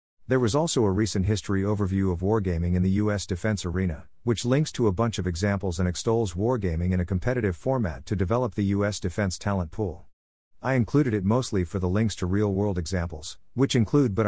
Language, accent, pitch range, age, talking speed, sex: English, American, 90-115 Hz, 50-69, 200 wpm, male